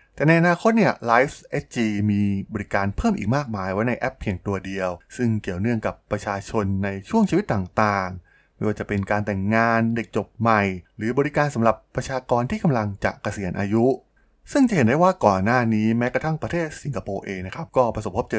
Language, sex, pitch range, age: Thai, male, 100-130 Hz, 20-39